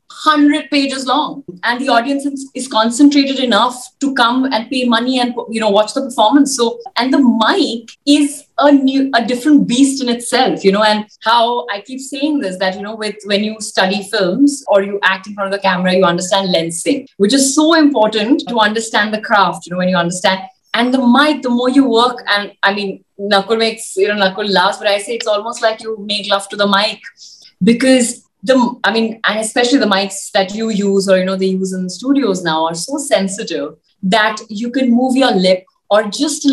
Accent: Indian